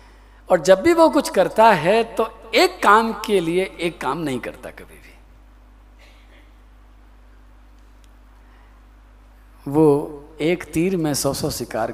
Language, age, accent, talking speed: Hindi, 50-69, native, 125 wpm